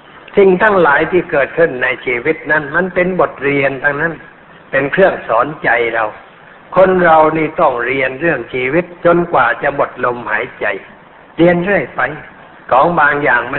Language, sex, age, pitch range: Thai, male, 60-79, 135-175 Hz